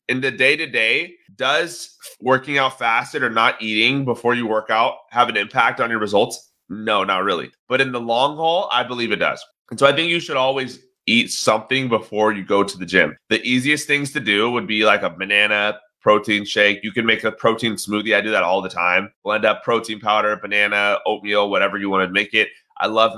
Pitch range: 105-135 Hz